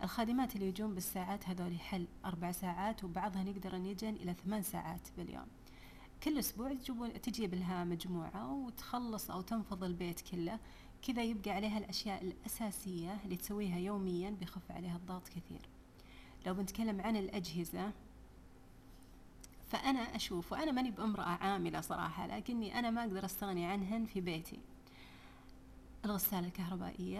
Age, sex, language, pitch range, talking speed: 30-49, female, Arabic, 180-220 Hz, 130 wpm